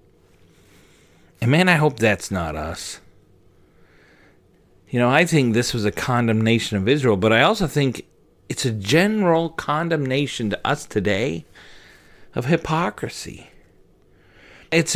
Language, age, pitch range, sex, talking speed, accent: English, 40-59, 110-170 Hz, male, 125 wpm, American